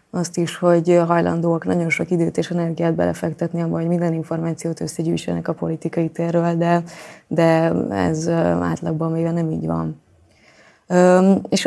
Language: Hungarian